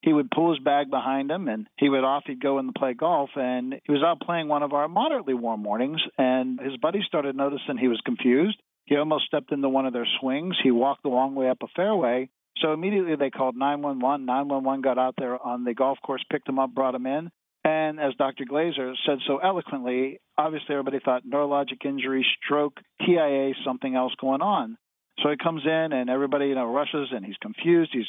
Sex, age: male, 50-69